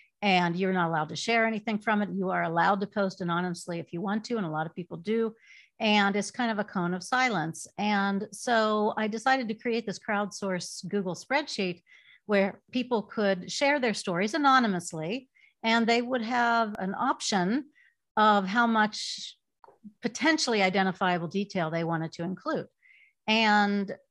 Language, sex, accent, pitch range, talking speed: English, female, American, 185-230 Hz, 165 wpm